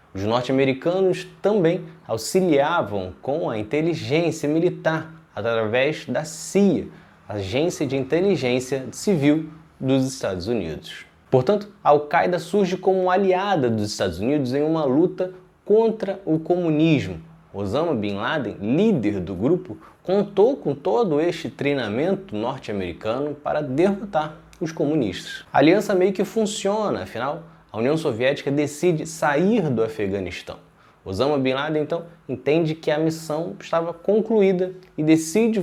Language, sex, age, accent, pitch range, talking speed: Portuguese, male, 20-39, Brazilian, 125-180 Hz, 125 wpm